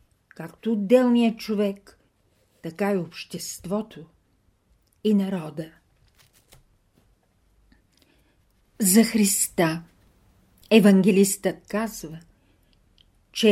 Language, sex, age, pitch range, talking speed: Bulgarian, female, 50-69, 150-205 Hz, 60 wpm